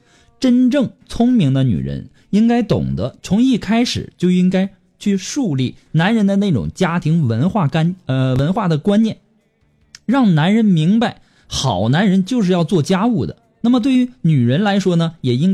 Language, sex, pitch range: Chinese, male, 145-210 Hz